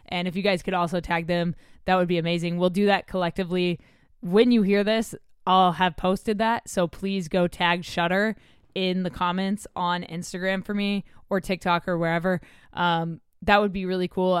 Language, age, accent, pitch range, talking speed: English, 10-29, American, 170-195 Hz, 190 wpm